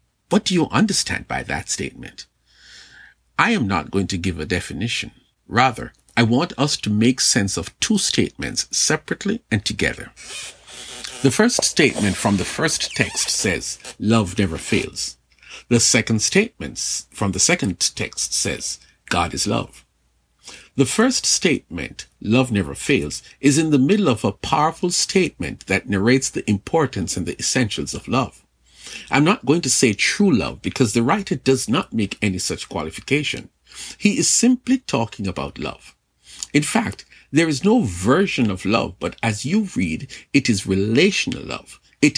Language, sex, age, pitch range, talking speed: English, male, 50-69, 95-145 Hz, 160 wpm